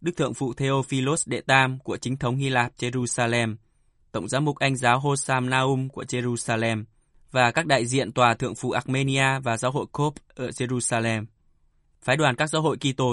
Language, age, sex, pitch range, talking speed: Vietnamese, 20-39, male, 115-140 Hz, 185 wpm